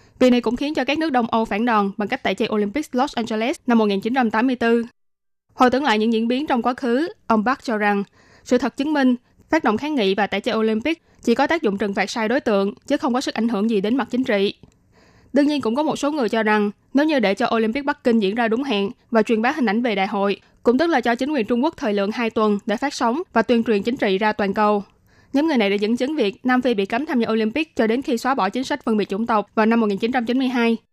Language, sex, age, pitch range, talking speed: Vietnamese, female, 20-39, 210-255 Hz, 280 wpm